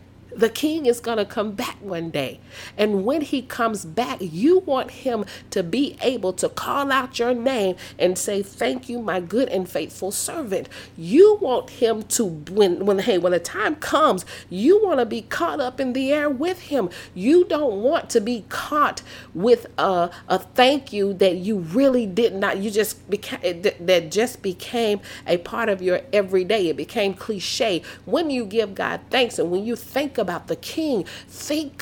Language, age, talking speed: English, 40-59, 185 wpm